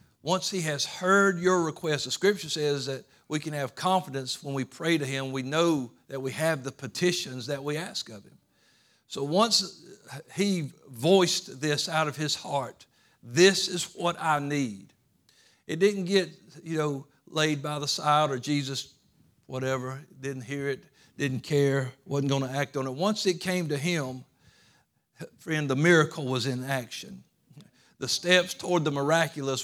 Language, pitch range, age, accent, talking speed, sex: English, 135-170 Hz, 60-79, American, 170 wpm, male